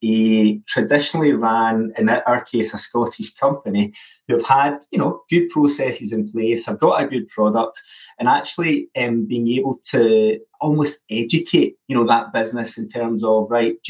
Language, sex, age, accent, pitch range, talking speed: English, male, 30-49, British, 110-165 Hz, 175 wpm